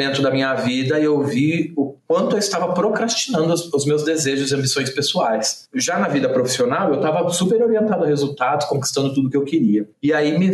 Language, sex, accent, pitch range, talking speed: Portuguese, male, Brazilian, 125-160 Hz, 200 wpm